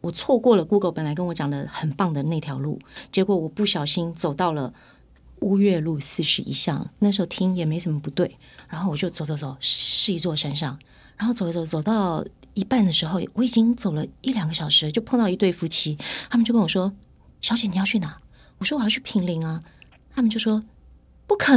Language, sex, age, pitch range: Chinese, female, 30-49, 155-220 Hz